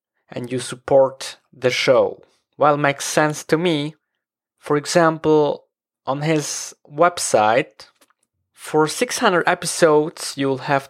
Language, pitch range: English, 130-165 Hz